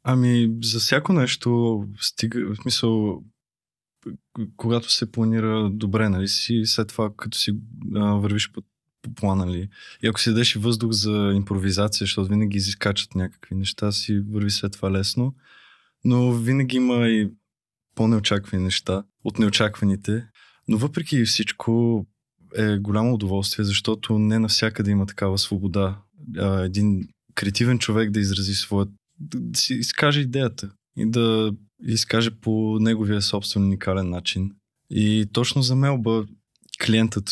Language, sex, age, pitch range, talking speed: Bulgarian, male, 20-39, 100-115 Hz, 135 wpm